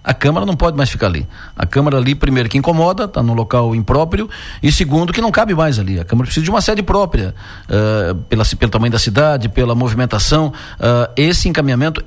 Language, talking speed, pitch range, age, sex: Portuguese, 210 wpm, 125-170 Hz, 50-69, male